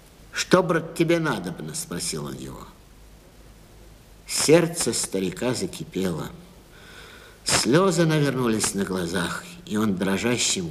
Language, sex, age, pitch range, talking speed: Russian, male, 60-79, 100-170 Hz, 100 wpm